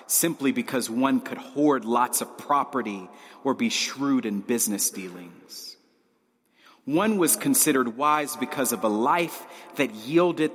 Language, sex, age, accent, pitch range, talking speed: English, male, 40-59, American, 115-155 Hz, 135 wpm